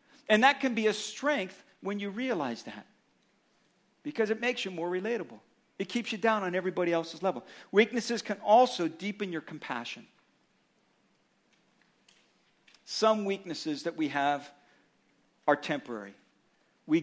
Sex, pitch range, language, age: male, 165-220 Hz, English, 50-69